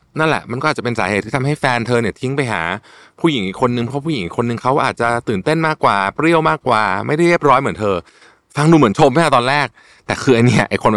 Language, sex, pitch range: Thai, male, 90-135 Hz